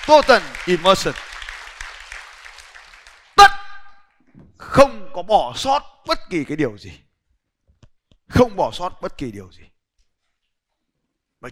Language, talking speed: Vietnamese, 105 wpm